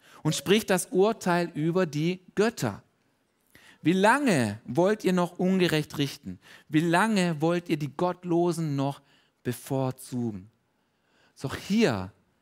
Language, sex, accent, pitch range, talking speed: German, male, German, 130-180 Hz, 115 wpm